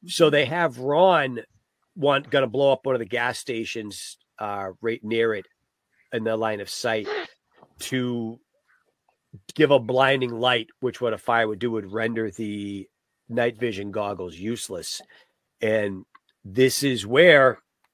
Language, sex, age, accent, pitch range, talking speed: English, male, 40-59, American, 105-125 Hz, 145 wpm